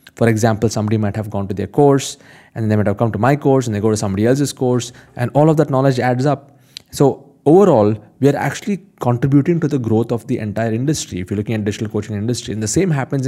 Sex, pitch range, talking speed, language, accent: male, 110-140 Hz, 255 wpm, English, Indian